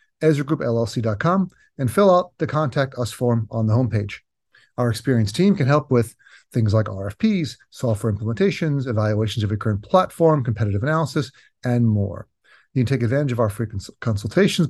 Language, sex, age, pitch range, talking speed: English, male, 40-59, 110-145 Hz, 160 wpm